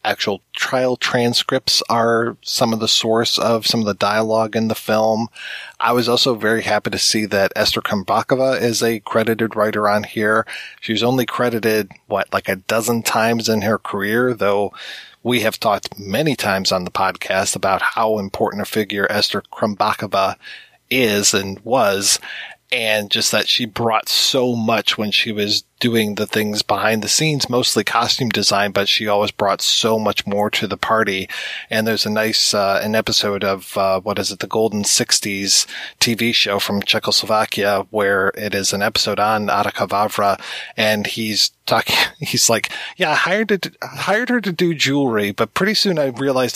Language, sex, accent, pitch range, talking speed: English, male, American, 105-120 Hz, 175 wpm